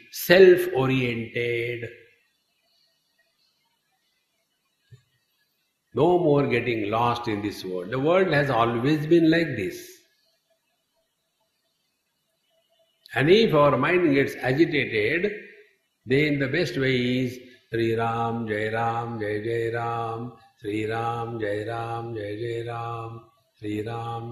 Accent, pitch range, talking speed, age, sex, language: Indian, 115-185 Hz, 105 wpm, 50-69, male, English